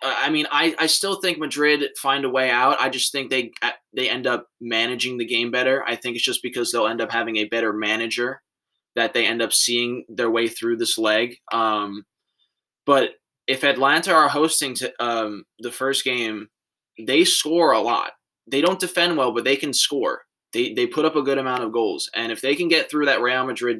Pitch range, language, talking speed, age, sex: 115-150 Hz, English, 215 wpm, 20-39, male